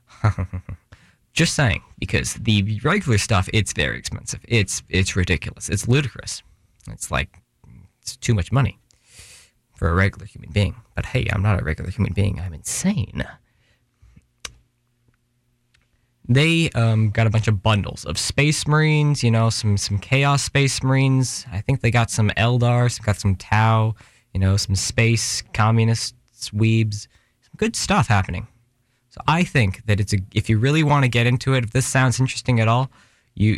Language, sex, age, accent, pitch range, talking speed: English, male, 20-39, American, 100-125 Hz, 165 wpm